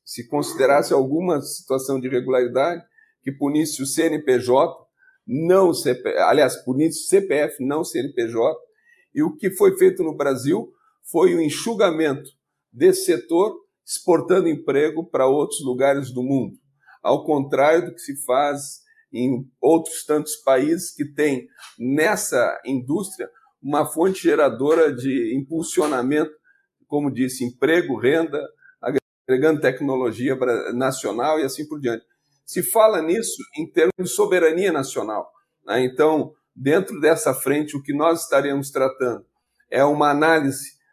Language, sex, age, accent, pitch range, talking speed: Portuguese, male, 50-69, Brazilian, 135-185 Hz, 130 wpm